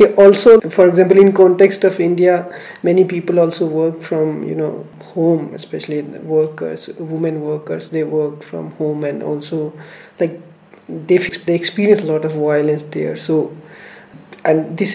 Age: 20-39